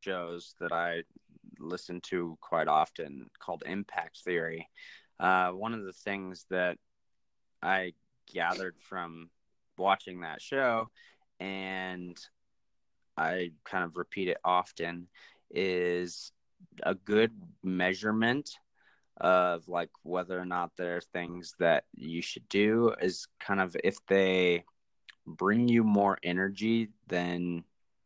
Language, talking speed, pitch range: English, 120 wpm, 90-105 Hz